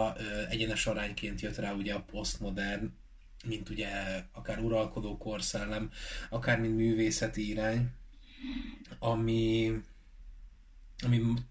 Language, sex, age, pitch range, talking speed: Hungarian, male, 20-39, 100-115 Hz, 95 wpm